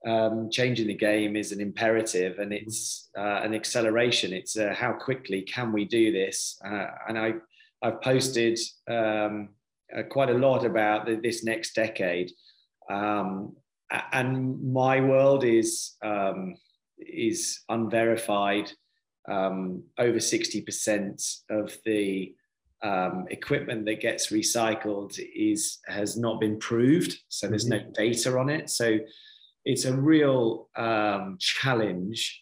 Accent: British